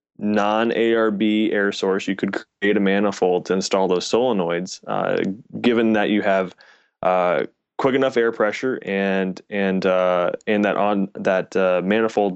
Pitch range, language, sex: 95-115 Hz, English, male